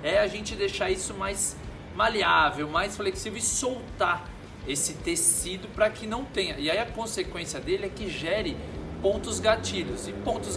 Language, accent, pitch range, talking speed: Portuguese, Brazilian, 150-220 Hz, 165 wpm